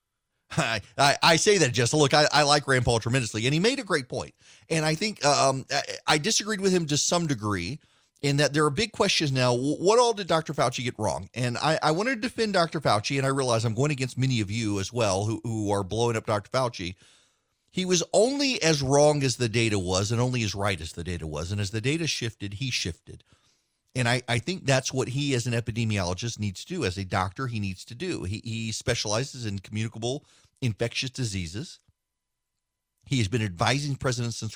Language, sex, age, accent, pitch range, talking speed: English, male, 40-59, American, 110-150 Hz, 220 wpm